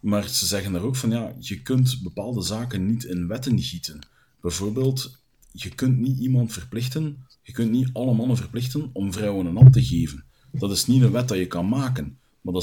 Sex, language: male, Dutch